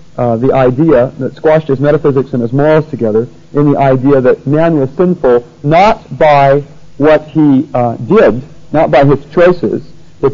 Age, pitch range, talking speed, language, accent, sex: 40-59, 115-145 Hz, 170 wpm, English, American, male